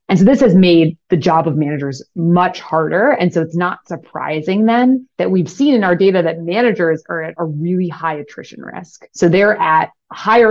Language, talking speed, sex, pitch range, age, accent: English, 205 wpm, female, 160-205 Hz, 30-49, American